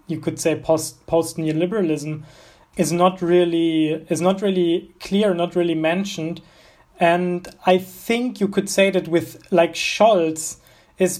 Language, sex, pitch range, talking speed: English, male, 160-185 Hz, 145 wpm